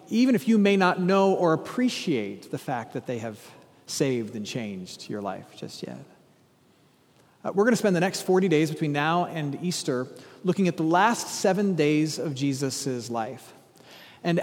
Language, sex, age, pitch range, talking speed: English, male, 40-59, 140-185 Hz, 175 wpm